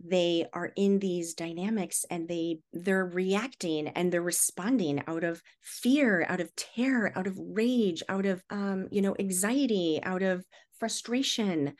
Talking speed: 155 wpm